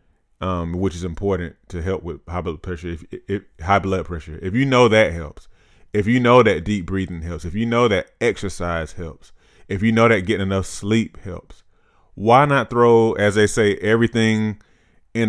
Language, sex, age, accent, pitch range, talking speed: English, male, 30-49, American, 90-110 Hz, 195 wpm